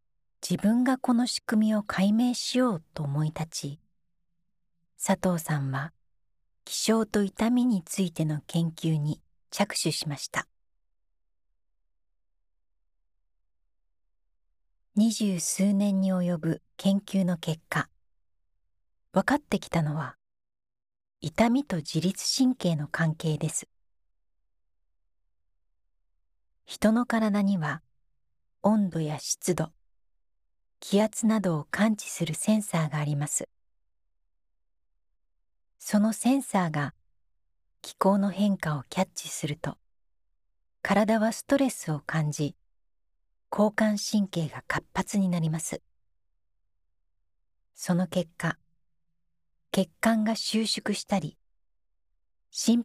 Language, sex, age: Japanese, female, 40-59